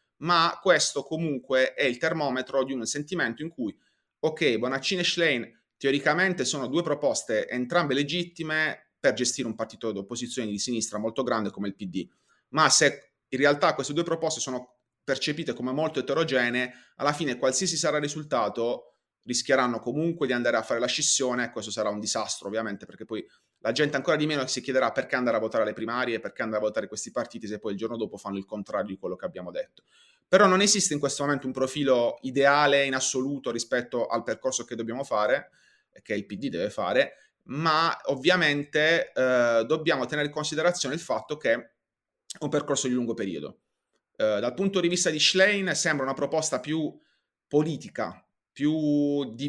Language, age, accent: Italian, 30-49, native